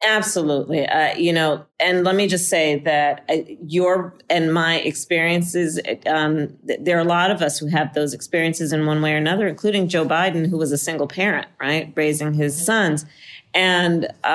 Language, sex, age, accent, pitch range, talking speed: English, female, 40-59, American, 160-190 Hz, 180 wpm